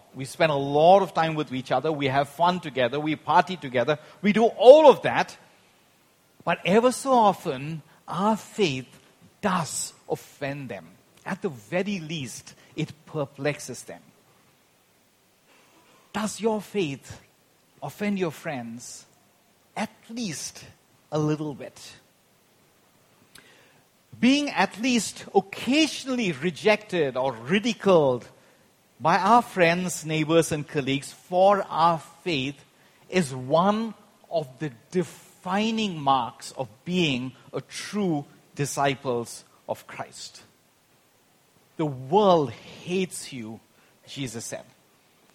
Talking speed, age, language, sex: 110 wpm, 50-69, English, male